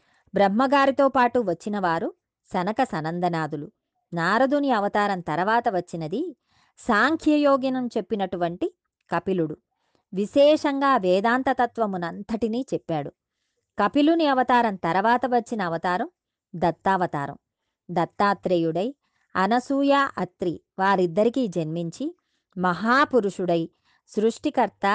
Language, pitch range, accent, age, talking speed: Telugu, 180-250 Hz, native, 20-39, 70 wpm